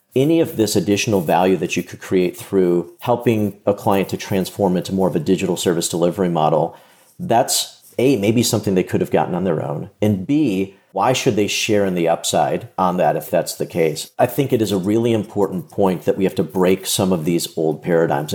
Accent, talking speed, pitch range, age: American, 220 wpm, 90-110 Hz, 40-59